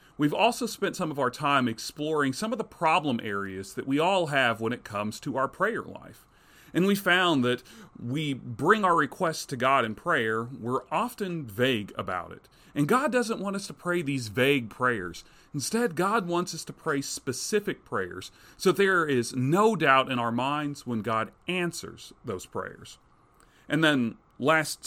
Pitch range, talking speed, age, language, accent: 120-170 Hz, 180 wpm, 40-59, English, American